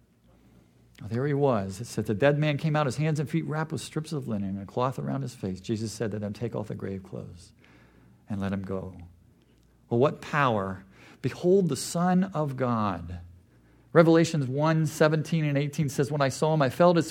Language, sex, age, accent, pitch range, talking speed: English, male, 50-69, American, 105-170 Hz, 205 wpm